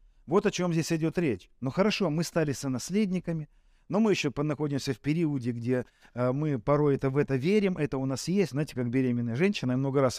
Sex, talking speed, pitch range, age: male, 205 wpm, 135-185 Hz, 40-59